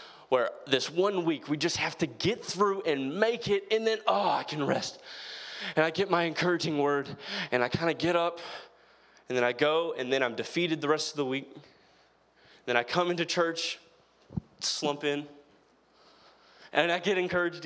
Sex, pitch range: male, 135-180 Hz